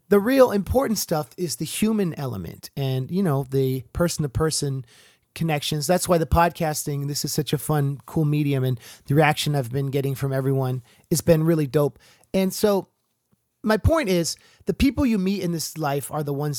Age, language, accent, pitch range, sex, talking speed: 30-49, English, American, 140-180 Hz, male, 190 wpm